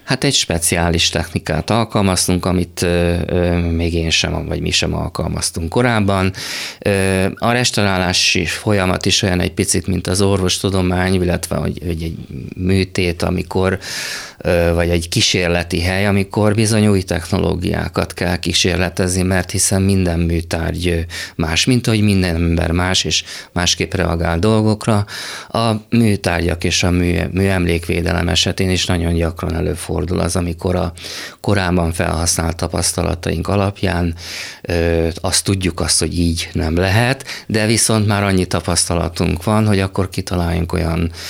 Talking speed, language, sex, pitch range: 125 wpm, Hungarian, male, 85-95 Hz